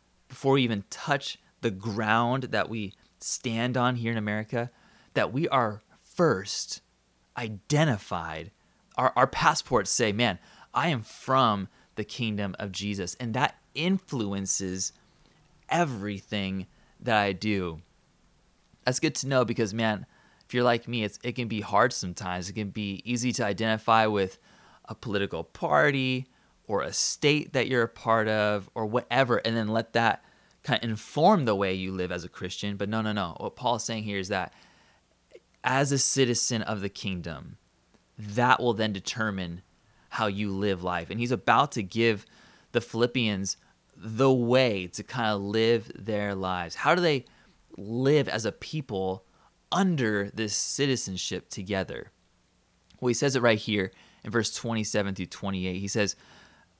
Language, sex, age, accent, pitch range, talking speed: English, male, 20-39, American, 95-120 Hz, 160 wpm